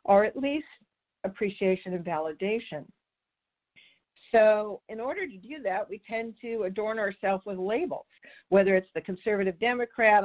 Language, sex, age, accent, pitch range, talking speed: English, female, 50-69, American, 170-215 Hz, 140 wpm